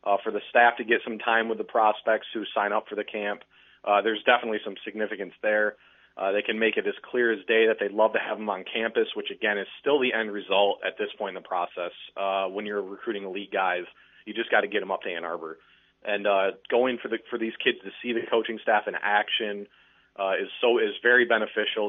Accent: American